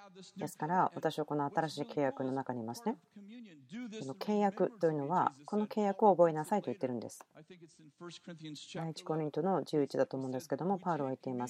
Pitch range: 140-195 Hz